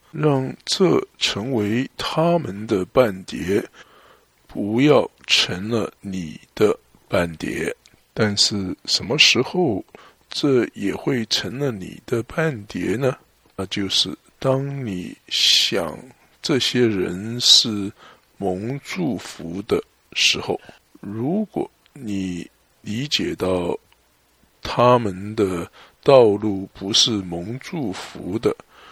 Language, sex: English, male